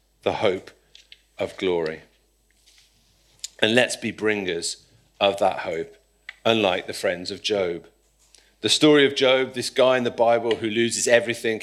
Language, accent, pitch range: English, British, 95-120 Hz